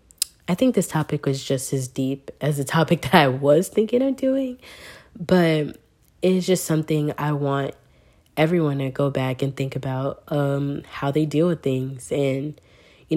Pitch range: 135-160 Hz